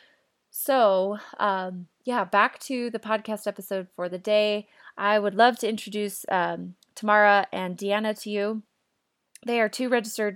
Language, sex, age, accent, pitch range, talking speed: English, female, 20-39, American, 185-215 Hz, 150 wpm